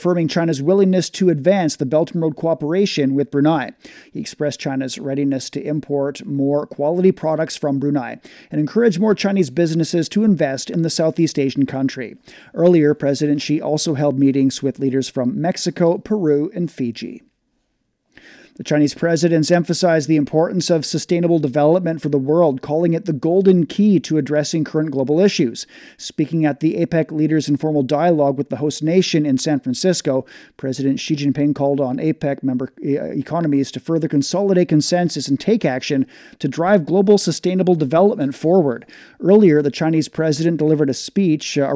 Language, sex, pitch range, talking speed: English, male, 140-170 Hz, 160 wpm